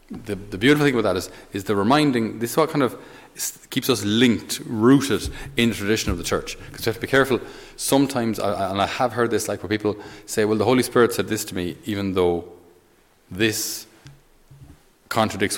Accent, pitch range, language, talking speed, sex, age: Irish, 90-110 Hz, English, 205 wpm, male, 30-49